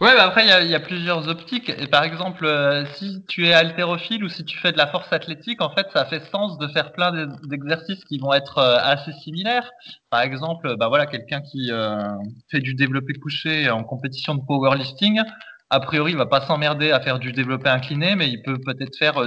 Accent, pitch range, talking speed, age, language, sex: French, 130-175 Hz, 220 wpm, 20-39, French, male